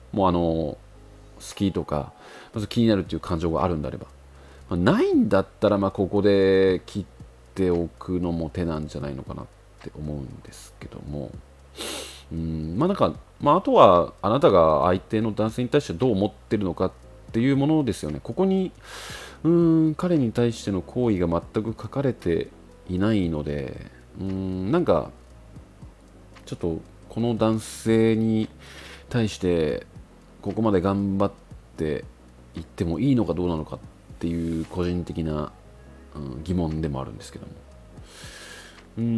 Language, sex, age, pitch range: Japanese, male, 40-59, 80-110 Hz